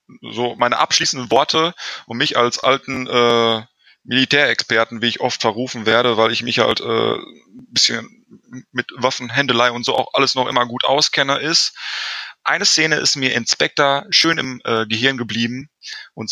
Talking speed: 170 wpm